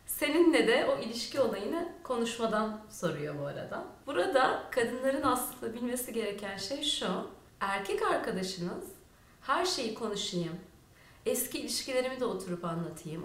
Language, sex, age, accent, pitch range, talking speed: Turkish, female, 30-49, native, 205-305 Hz, 120 wpm